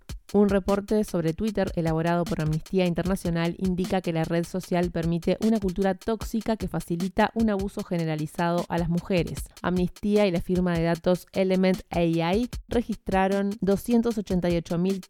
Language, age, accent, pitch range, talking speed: Spanish, 20-39, Argentinian, 170-200 Hz, 140 wpm